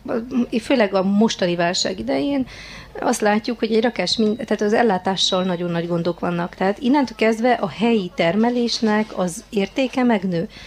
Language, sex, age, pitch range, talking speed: Hungarian, female, 30-49, 185-240 Hz, 145 wpm